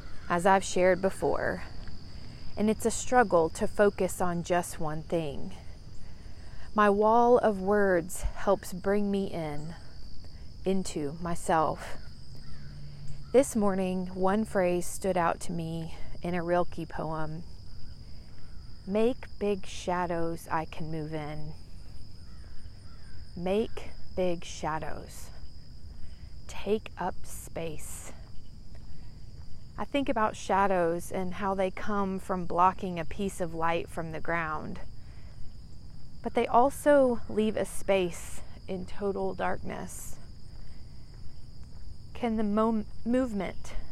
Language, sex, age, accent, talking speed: English, female, 40-59, American, 105 wpm